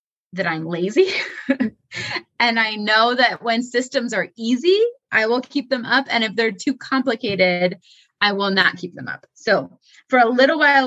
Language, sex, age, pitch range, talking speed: English, female, 20-39, 185-240 Hz, 175 wpm